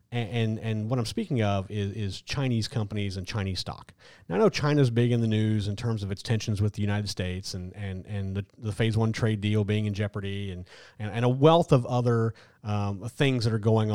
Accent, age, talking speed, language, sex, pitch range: American, 30-49, 235 wpm, English, male, 100-120 Hz